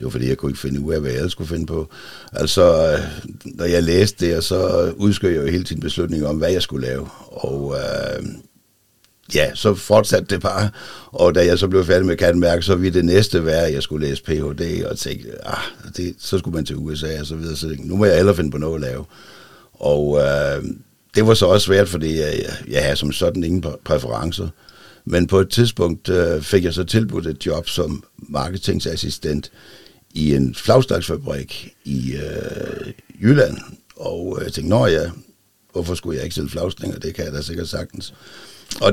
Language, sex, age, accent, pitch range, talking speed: Danish, male, 60-79, native, 75-95 Hz, 200 wpm